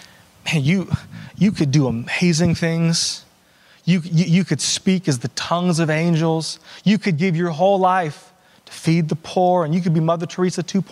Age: 20-39